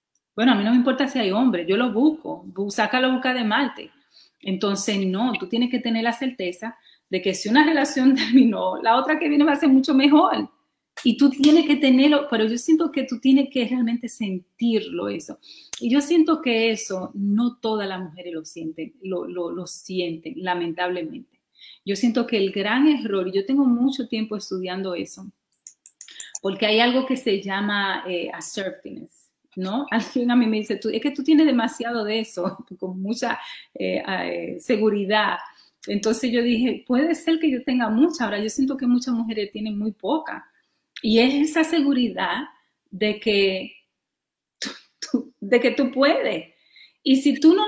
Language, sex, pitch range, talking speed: Spanish, female, 200-270 Hz, 180 wpm